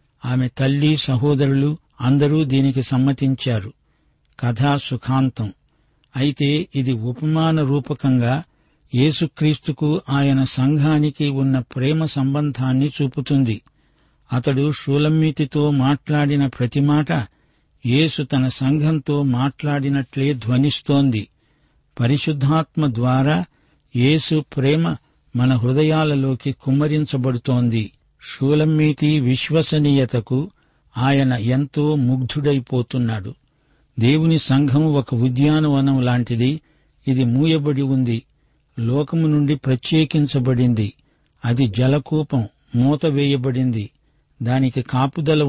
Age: 60-79